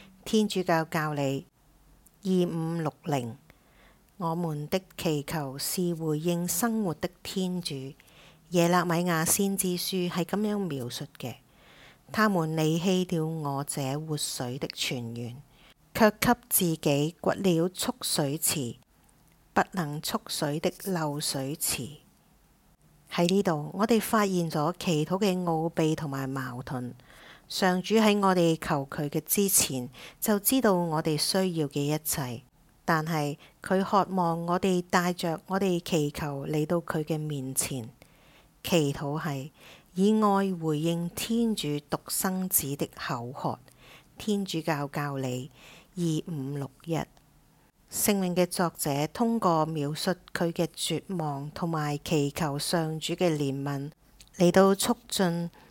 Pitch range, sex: 145-185 Hz, female